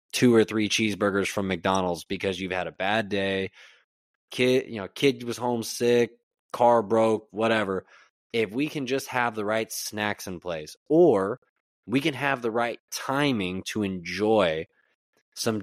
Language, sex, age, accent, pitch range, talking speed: English, male, 20-39, American, 100-125 Hz, 155 wpm